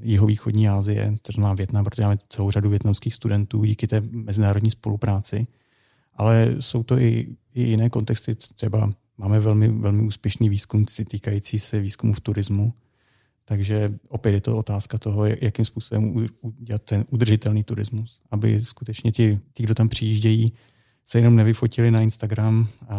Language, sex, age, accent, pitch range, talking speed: Czech, male, 30-49, native, 105-115 Hz, 145 wpm